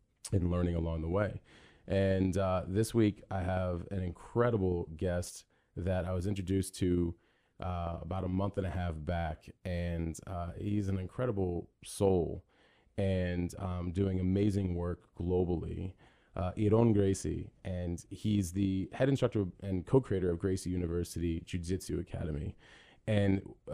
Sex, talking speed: male, 145 wpm